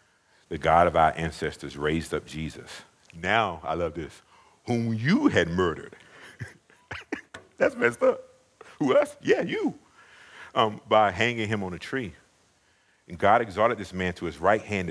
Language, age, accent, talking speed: English, 50-69, American, 155 wpm